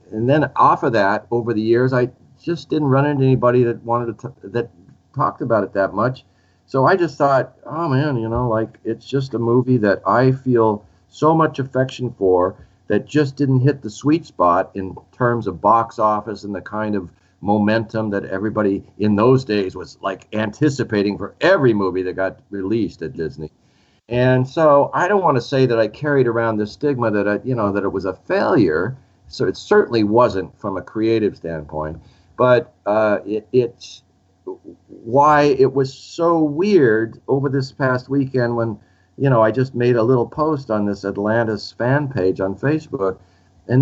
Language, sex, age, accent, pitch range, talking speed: English, male, 50-69, American, 100-135 Hz, 185 wpm